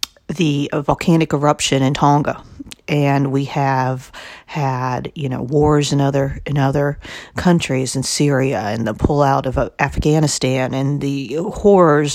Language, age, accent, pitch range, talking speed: English, 40-59, American, 140-155 Hz, 135 wpm